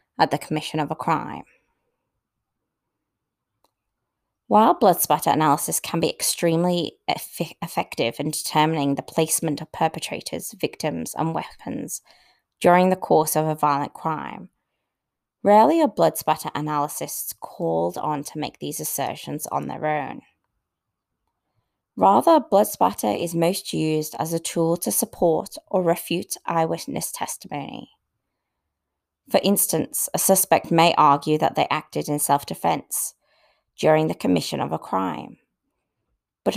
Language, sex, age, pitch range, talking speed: English, female, 20-39, 145-175 Hz, 125 wpm